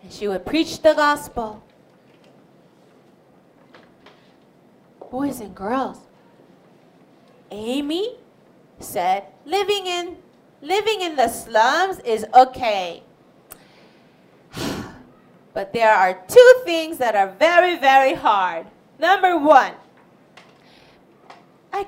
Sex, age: female, 30-49